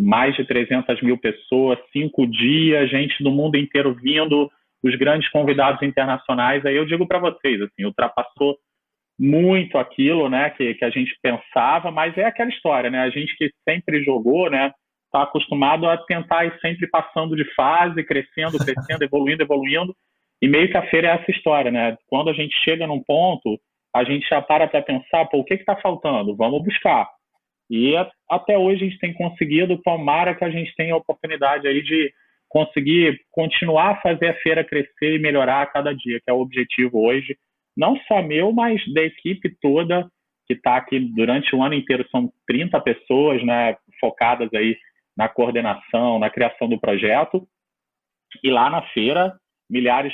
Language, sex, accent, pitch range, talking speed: Portuguese, male, Brazilian, 130-165 Hz, 175 wpm